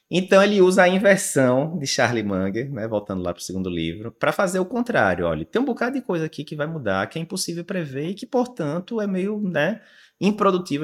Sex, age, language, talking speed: male, 20-39, Portuguese, 220 wpm